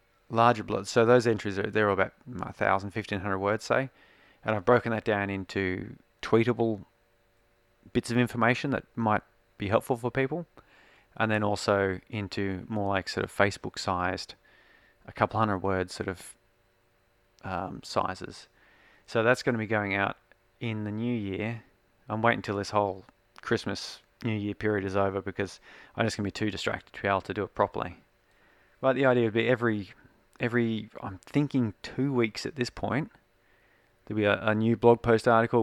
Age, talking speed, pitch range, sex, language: 30-49, 180 wpm, 95-115 Hz, male, English